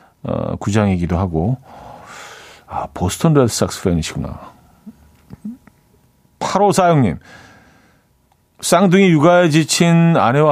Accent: native